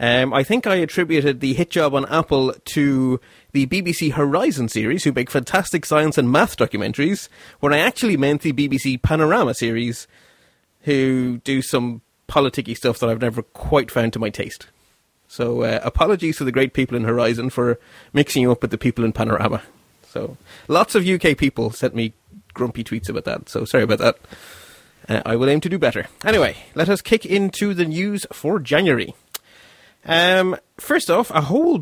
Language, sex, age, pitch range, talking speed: English, male, 30-49, 125-170 Hz, 185 wpm